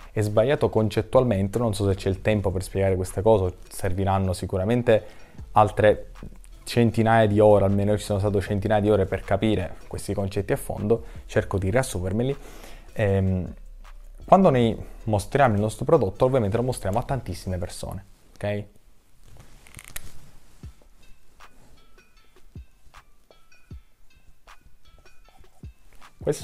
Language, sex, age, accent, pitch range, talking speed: Italian, male, 20-39, native, 95-115 Hz, 110 wpm